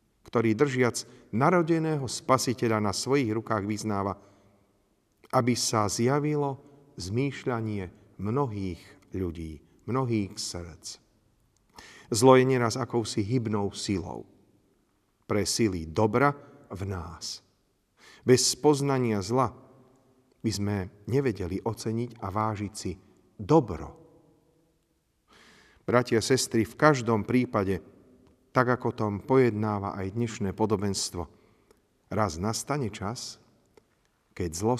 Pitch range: 100-130 Hz